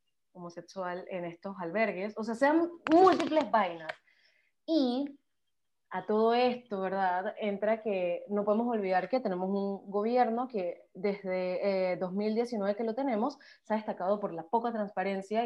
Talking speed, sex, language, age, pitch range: 145 wpm, female, Spanish, 20-39, 190-230 Hz